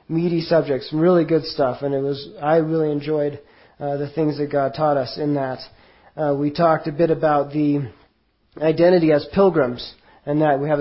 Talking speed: 190 wpm